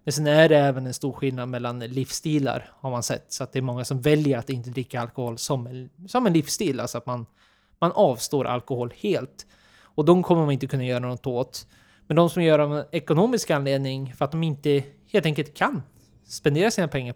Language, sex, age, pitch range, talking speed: Swedish, male, 20-39, 130-165 Hz, 215 wpm